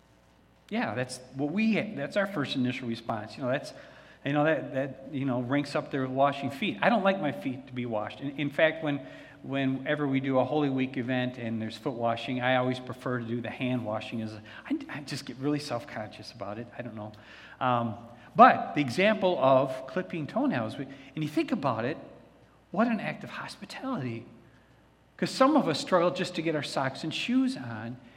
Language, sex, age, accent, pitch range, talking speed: English, male, 50-69, American, 120-160 Hz, 210 wpm